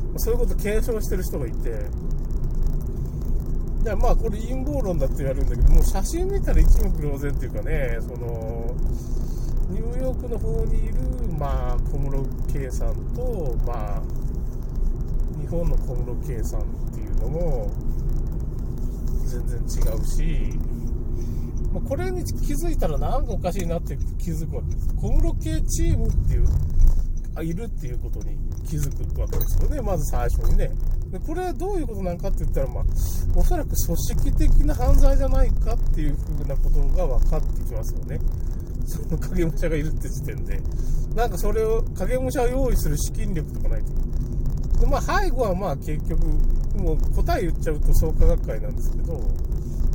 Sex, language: male, Japanese